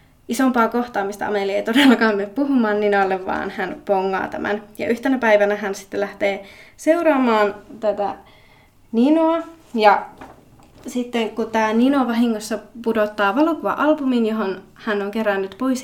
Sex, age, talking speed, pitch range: female, 20-39, 135 wpm, 200-235 Hz